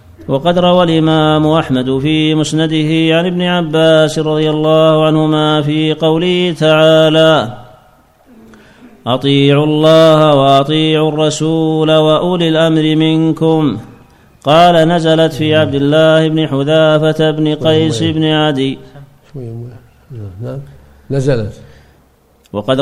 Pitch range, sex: 140-160 Hz, male